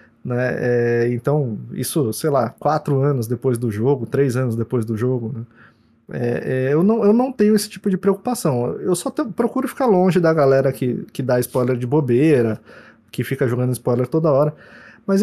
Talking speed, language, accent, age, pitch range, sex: 175 wpm, Portuguese, Brazilian, 20-39, 125-175 Hz, male